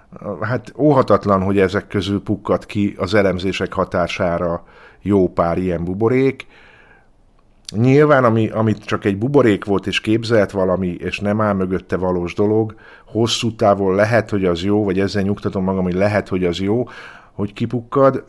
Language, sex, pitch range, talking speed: Hungarian, male, 90-110 Hz, 150 wpm